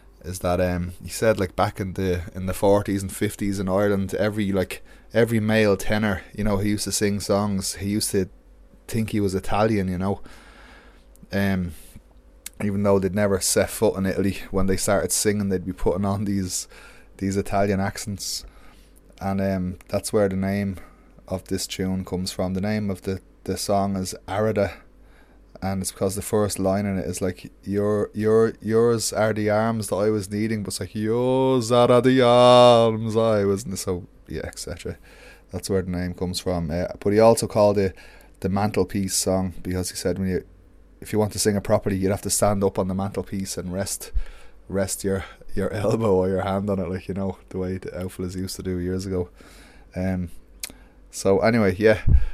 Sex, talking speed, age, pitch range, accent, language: male, 195 wpm, 20-39, 95-105 Hz, Irish, English